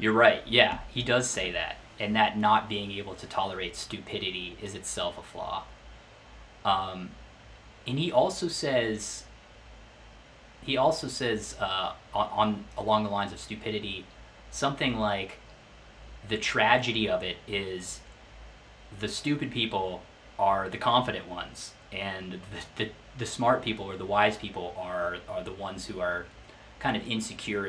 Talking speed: 145 wpm